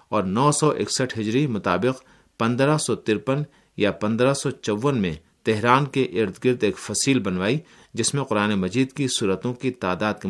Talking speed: 170 wpm